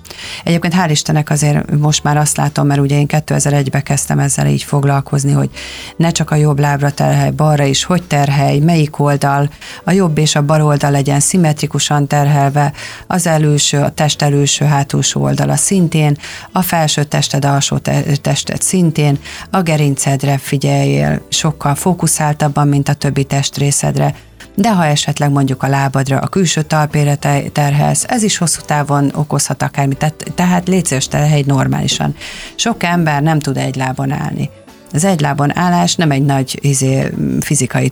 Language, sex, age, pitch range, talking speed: Hungarian, female, 40-59, 140-160 Hz, 155 wpm